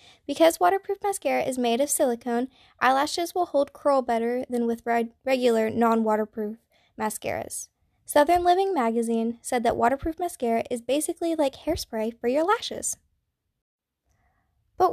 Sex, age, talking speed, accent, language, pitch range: female, 10-29, 130 wpm, American, English, 235-325 Hz